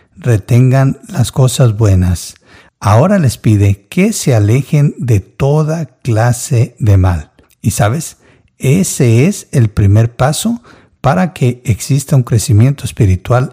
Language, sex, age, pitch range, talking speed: Spanish, male, 60-79, 105-140 Hz, 125 wpm